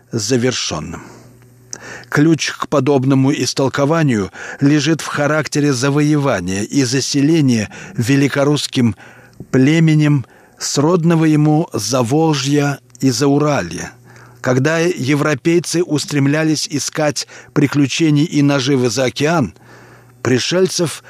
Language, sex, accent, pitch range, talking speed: Russian, male, native, 130-155 Hz, 85 wpm